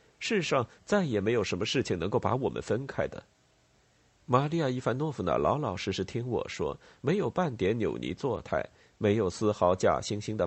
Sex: male